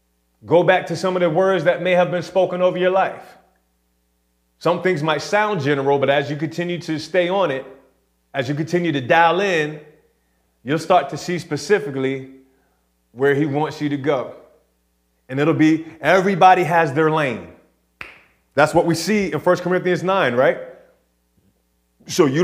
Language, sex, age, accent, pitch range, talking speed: English, male, 30-49, American, 135-190 Hz, 170 wpm